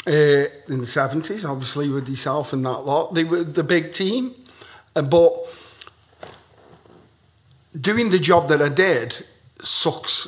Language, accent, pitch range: English, British, 130-155 Hz